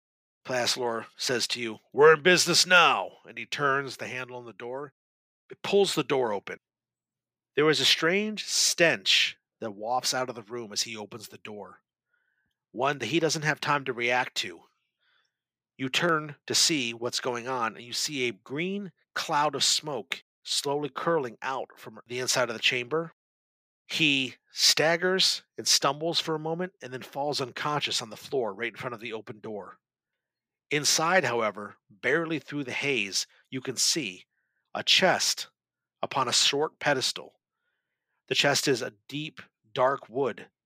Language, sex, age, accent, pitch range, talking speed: English, male, 50-69, American, 120-155 Hz, 165 wpm